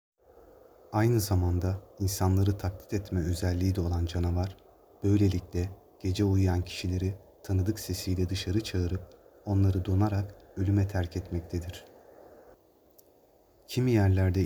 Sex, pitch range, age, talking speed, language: male, 90-100 Hz, 30-49, 100 wpm, Turkish